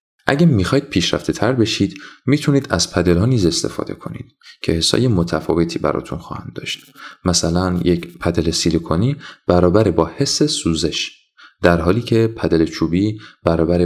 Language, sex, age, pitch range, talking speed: Persian, male, 30-49, 85-115 Hz, 140 wpm